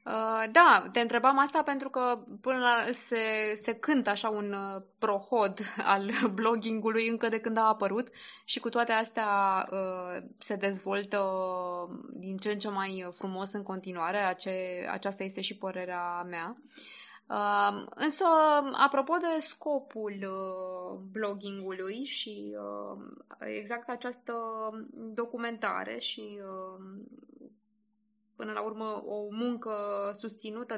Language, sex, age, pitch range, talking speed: Romanian, female, 20-39, 200-240 Hz, 110 wpm